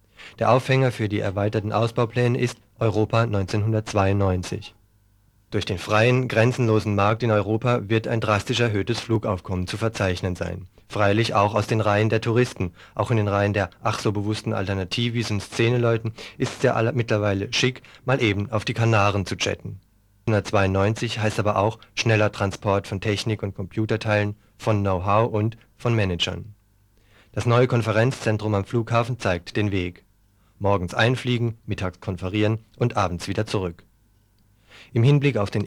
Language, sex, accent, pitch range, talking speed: German, male, German, 100-115 Hz, 150 wpm